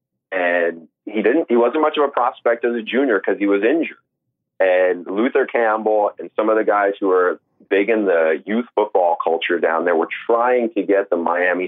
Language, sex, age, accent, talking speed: English, male, 30-49, American, 205 wpm